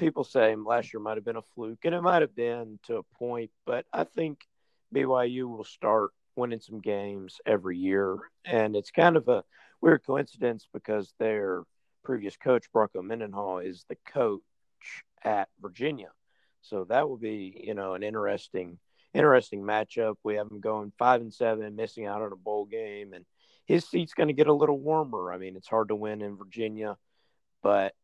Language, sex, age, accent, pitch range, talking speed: English, male, 50-69, American, 100-125 Hz, 185 wpm